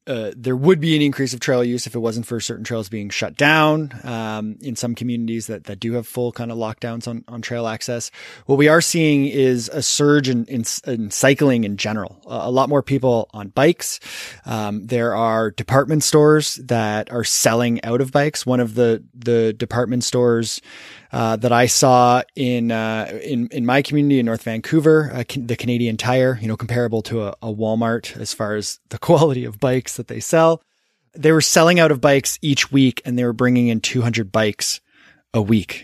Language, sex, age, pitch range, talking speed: English, male, 20-39, 115-140 Hz, 205 wpm